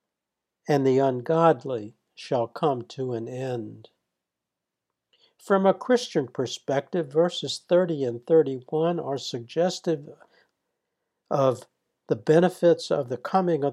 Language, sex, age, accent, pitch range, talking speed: English, male, 60-79, American, 130-165 Hz, 110 wpm